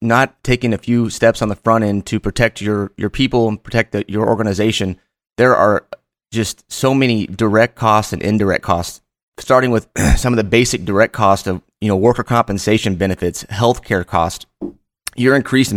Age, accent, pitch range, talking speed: 30-49, American, 105-120 Hz, 180 wpm